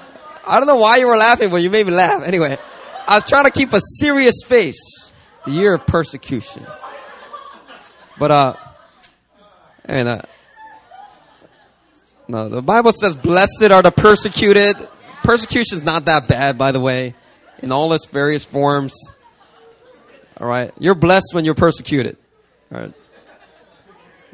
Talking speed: 145 wpm